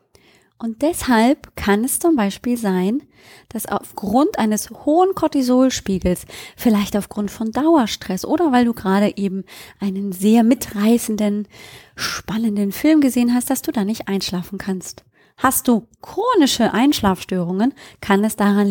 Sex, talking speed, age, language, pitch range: female, 130 wpm, 20-39, German, 200-265 Hz